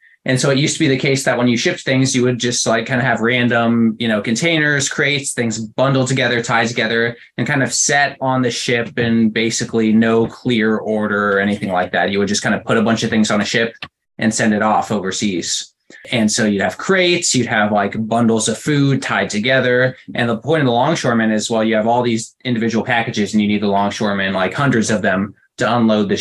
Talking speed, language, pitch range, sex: 235 wpm, English, 105-125 Hz, male